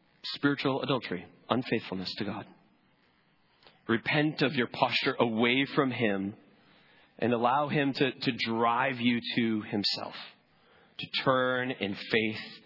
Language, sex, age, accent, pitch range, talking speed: English, male, 40-59, American, 95-120 Hz, 120 wpm